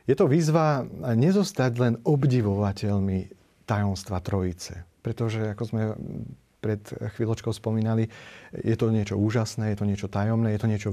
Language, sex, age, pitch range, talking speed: Slovak, male, 40-59, 105-125 Hz, 135 wpm